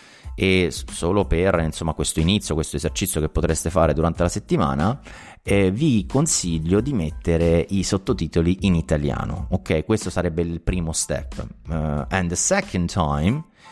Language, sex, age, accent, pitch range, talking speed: Italian, male, 30-49, native, 80-100 Hz, 150 wpm